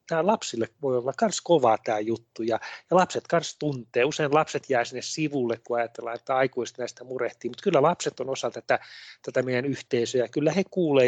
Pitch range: 120-145 Hz